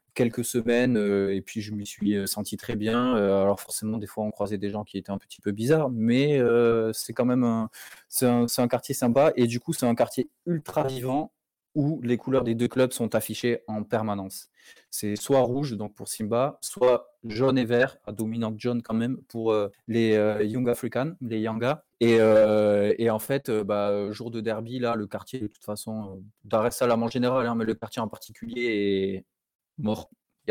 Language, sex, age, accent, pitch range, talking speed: French, male, 20-39, French, 110-125 Hz, 220 wpm